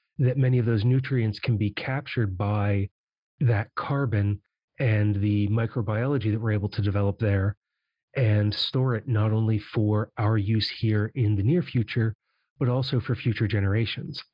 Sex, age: male, 30-49